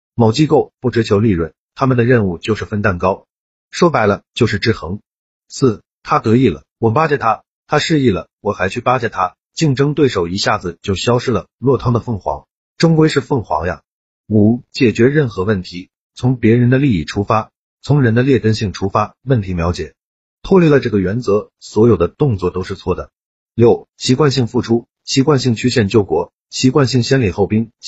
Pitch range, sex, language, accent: 95-125 Hz, male, Chinese, native